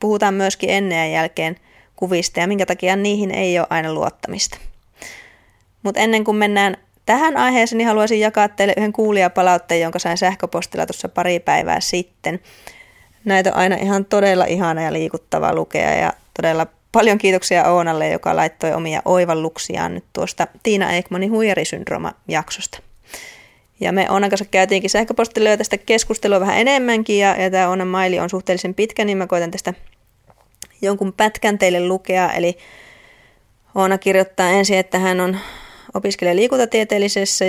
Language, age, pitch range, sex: Finnish, 20-39, 175-200 Hz, female